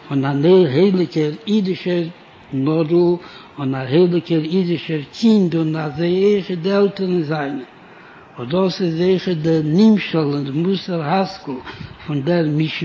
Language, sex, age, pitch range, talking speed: Hebrew, male, 60-79, 155-185 Hz, 115 wpm